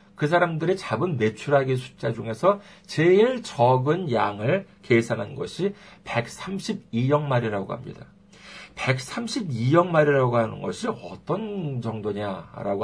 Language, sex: Korean, male